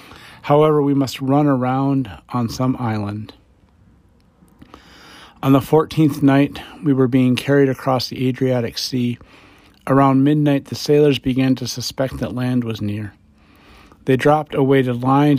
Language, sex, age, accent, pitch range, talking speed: English, male, 40-59, American, 120-140 Hz, 140 wpm